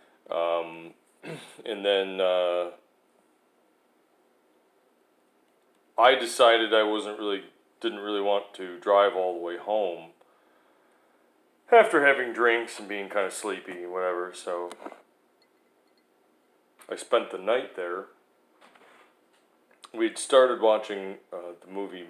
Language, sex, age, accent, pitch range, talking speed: English, male, 30-49, American, 90-115 Hz, 110 wpm